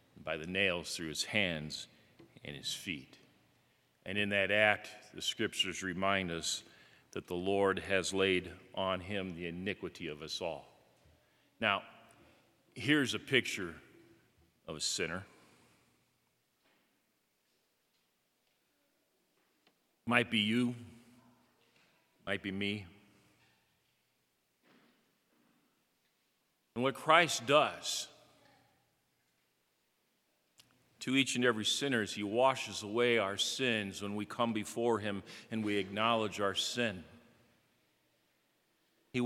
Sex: male